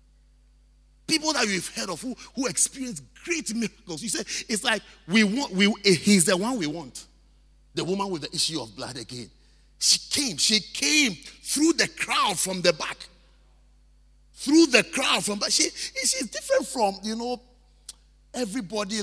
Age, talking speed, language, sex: 50-69, 165 wpm, English, male